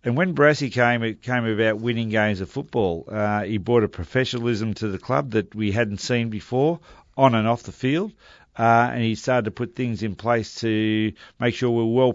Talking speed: 215 wpm